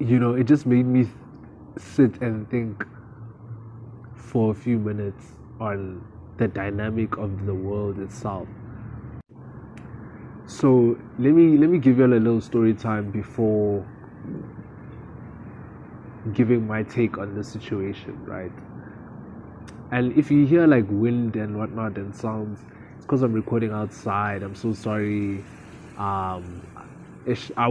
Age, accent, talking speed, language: 20-39, South African, 130 wpm, English